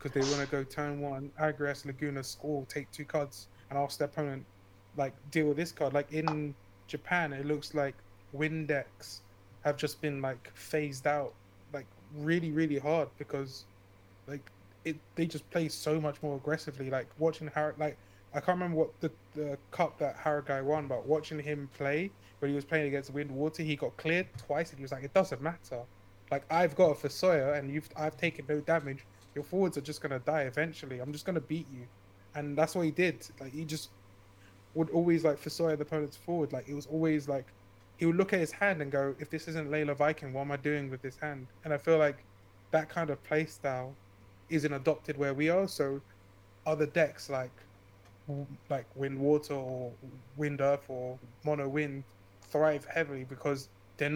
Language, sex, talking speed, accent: English, male, 195 wpm, British